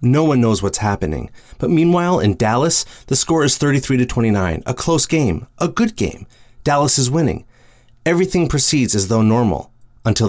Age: 30-49